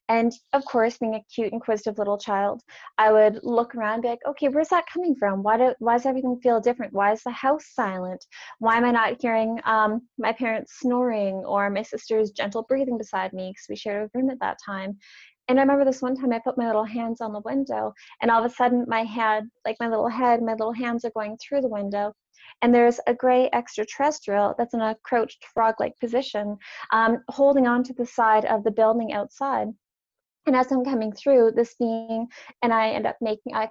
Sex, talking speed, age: female, 215 wpm, 20-39